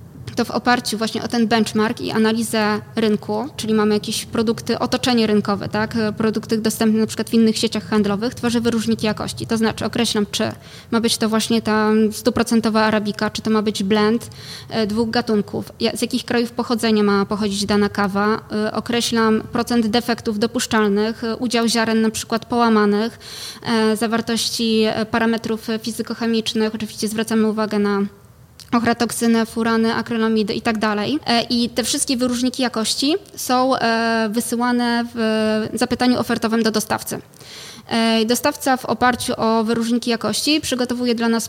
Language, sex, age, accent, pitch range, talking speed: Polish, female, 20-39, native, 220-240 Hz, 140 wpm